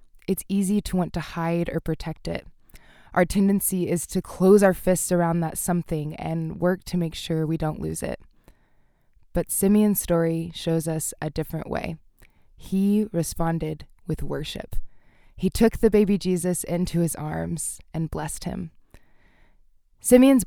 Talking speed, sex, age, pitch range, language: 150 wpm, female, 20-39, 165-190 Hz, English